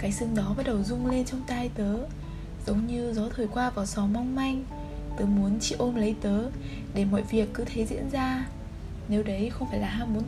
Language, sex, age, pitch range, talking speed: Vietnamese, female, 10-29, 205-245 Hz, 230 wpm